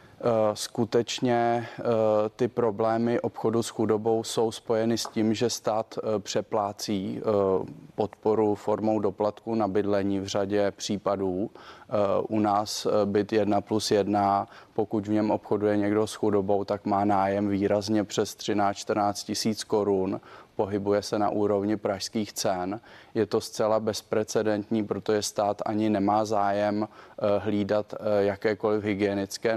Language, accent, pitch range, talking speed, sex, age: Czech, native, 105-110 Hz, 120 wpm, male, 30-49